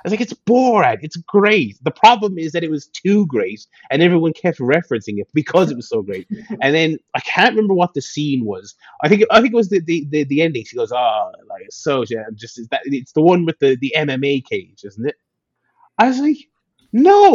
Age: 30-49